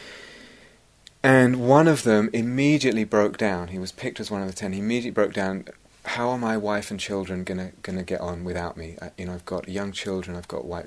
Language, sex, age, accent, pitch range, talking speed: English, male, 30-49, British, 90-110 Hz, 225 wpm